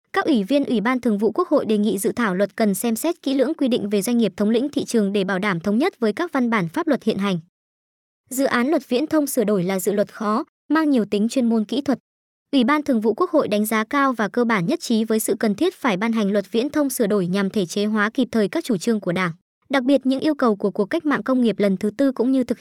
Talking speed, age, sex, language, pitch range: 300 wpm, 20-39, male, Vietnamese, 210-270 Hz